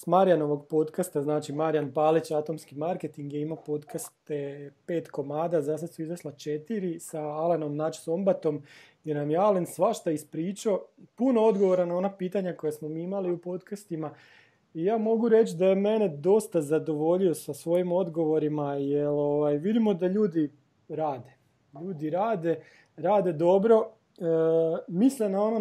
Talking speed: 150 wpm